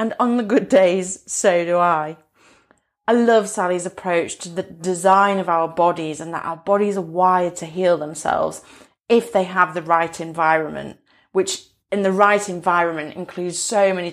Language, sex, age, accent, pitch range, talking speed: English, female, 30-49, British, 175-200 Hz, 175 wpm